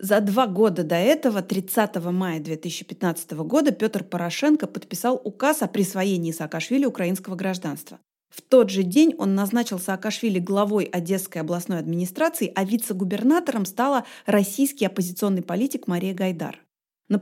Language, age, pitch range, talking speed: Russian, 30-49, 185-235 Hz, 130 wpm